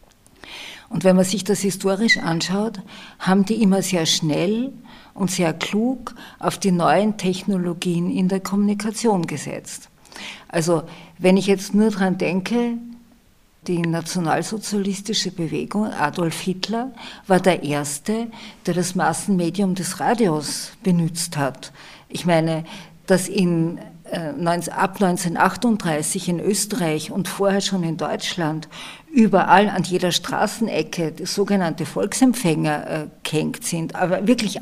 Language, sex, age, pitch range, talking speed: German, female, 50-69, 175-215 Hz, 120 wpm